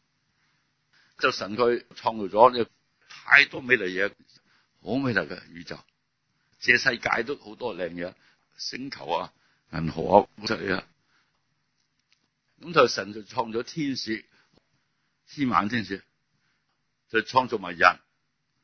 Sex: male